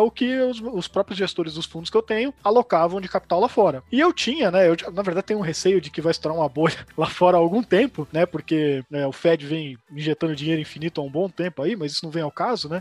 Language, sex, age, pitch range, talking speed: Portuguese, male, 20-39, 160-220 Hz, 270 wpm